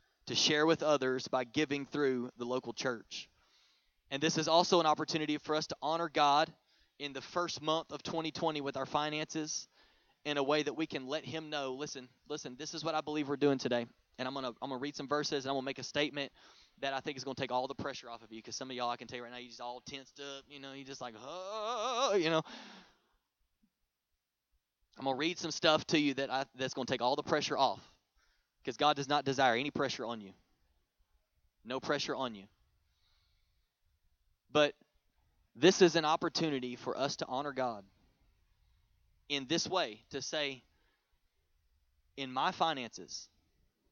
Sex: male